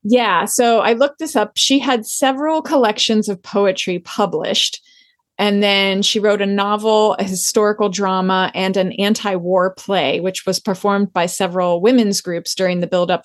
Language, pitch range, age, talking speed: English, 190-230 Hz, 30-49, 165 wpm